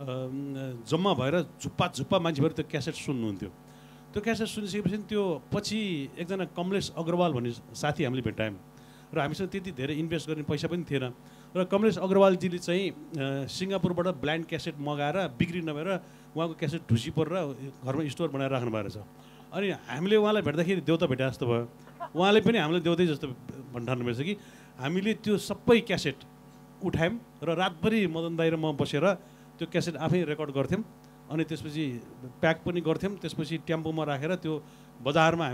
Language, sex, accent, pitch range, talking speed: English, male, Indian, 140-180 Hz, 130 wpm